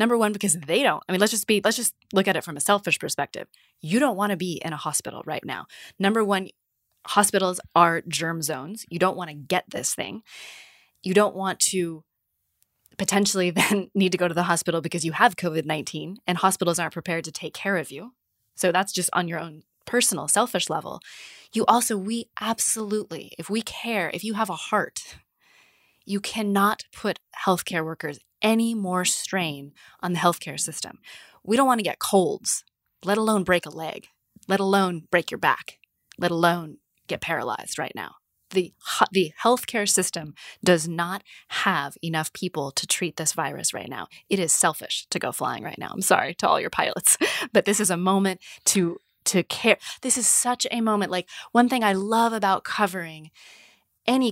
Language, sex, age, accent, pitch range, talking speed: English, female, 20-39, American, 170-210 Hz, 190 wpm